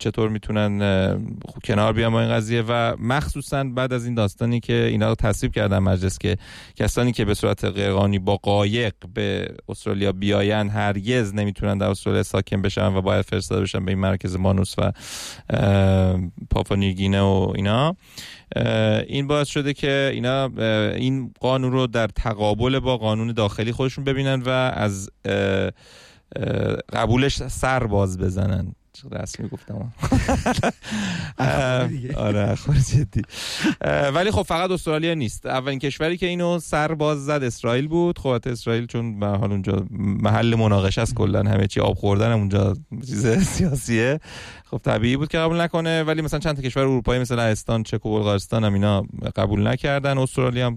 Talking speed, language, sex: 150 wpm, Persian, male